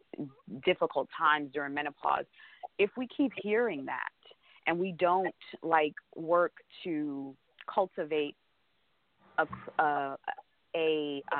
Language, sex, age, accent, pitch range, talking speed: English, female, 30-49, American, 150-200 Hz, 100 wpm